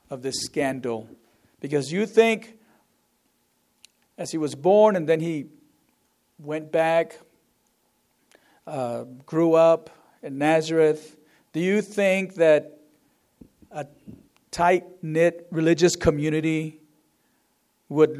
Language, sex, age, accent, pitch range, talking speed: English, male, 50-69, American, 155-200 Hz, 100 wpm